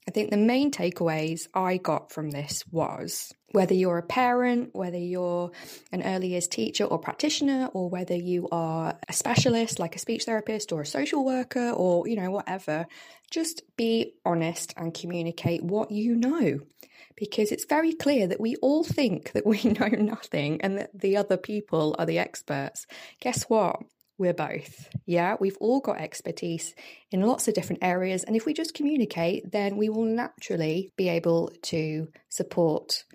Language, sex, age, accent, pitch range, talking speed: English, female, 20-39, British, 175-250 Hz, 170 wpm